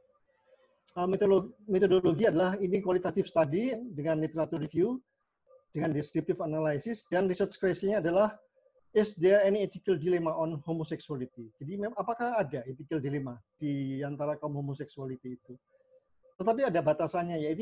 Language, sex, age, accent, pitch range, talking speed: Indonesian, male, 40-59, native, 155-215 Hz, 130 wpm